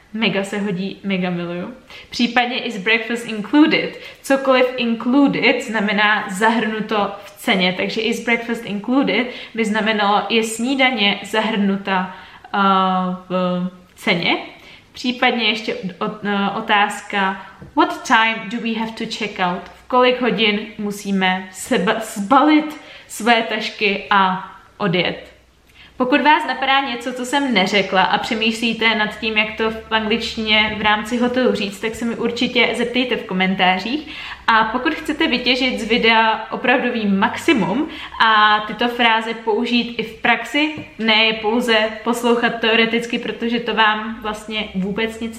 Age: 20-39